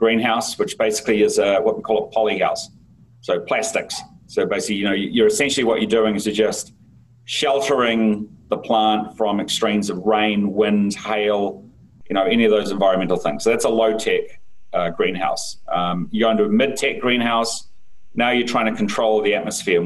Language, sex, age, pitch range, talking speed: English, male, 30-49, 105-120 Hz, 180 wpm